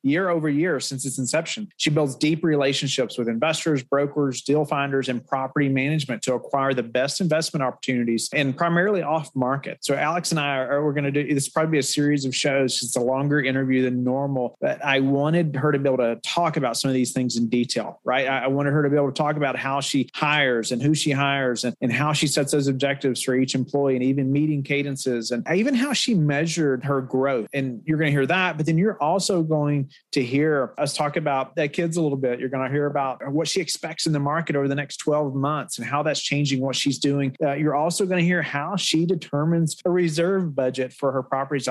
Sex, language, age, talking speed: male, English, 30-49, 235 wpm